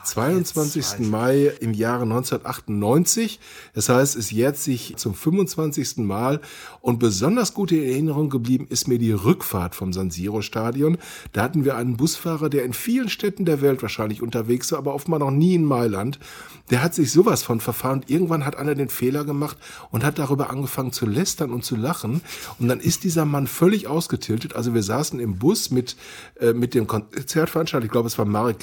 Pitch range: 115-150 Hz